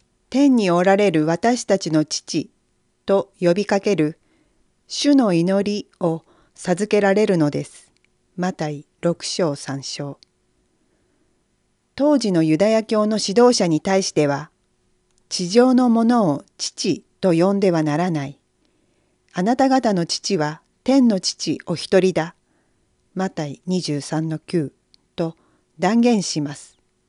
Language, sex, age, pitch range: Japanese, female, 40-59, 155-210 Hz